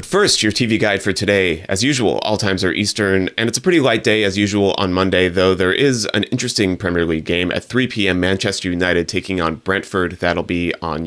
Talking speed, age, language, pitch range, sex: 220 wpm, 30-49, English, 90-115 Hz, male